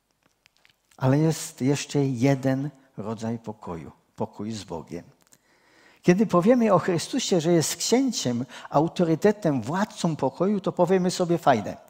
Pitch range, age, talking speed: 130-185 Hz, 50-69, 115 wpm